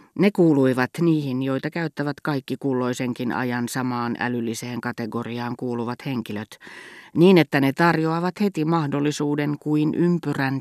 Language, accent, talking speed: Finnish, native, 120 wpm